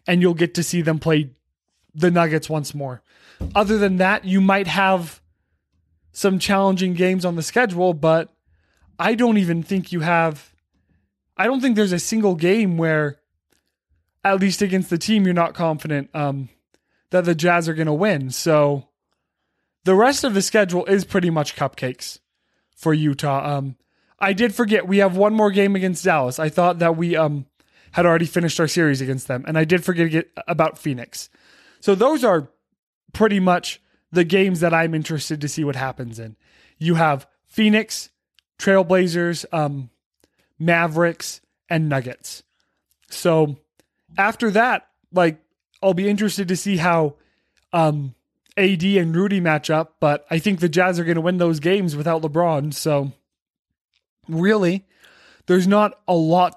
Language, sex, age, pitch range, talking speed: English, male, 20-39, 150-190 Hz, 160 wpm